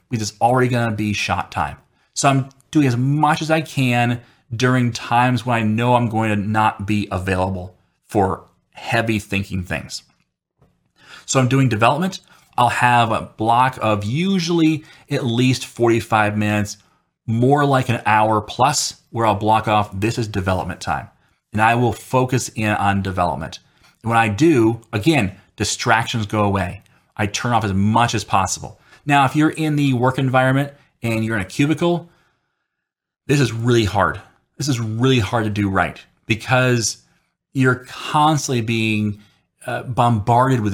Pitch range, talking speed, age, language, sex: 105-130 Hz, 160 wpm, 30-49, English, male